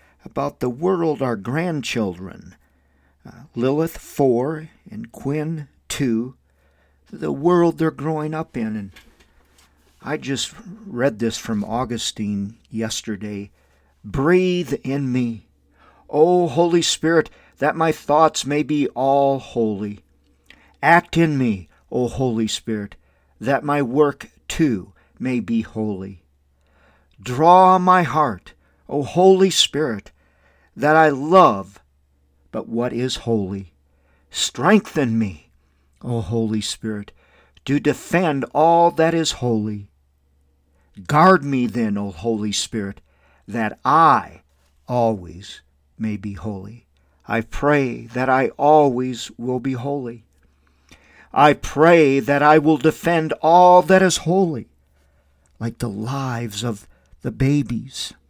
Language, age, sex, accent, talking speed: English, 50-69, male, American, 115 wpm